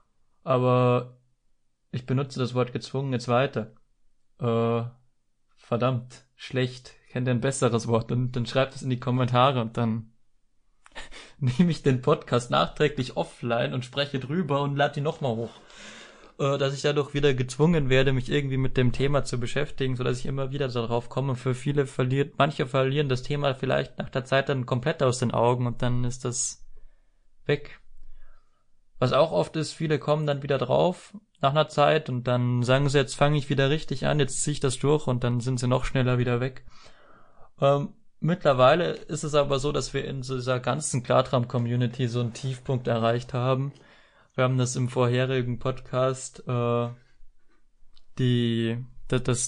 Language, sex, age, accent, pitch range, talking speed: German, male, 20-39, German, 125-140 Hz, 170 wpm